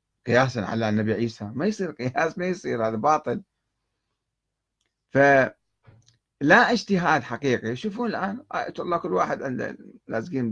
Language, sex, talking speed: Arabic, male, 120 wpm